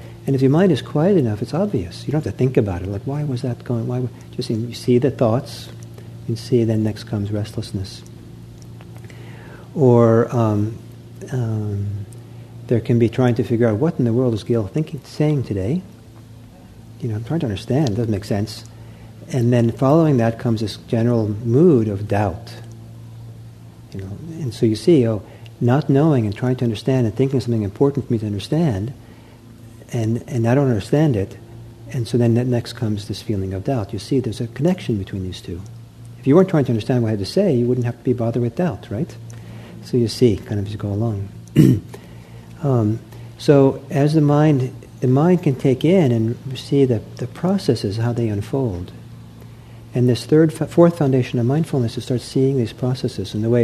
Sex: male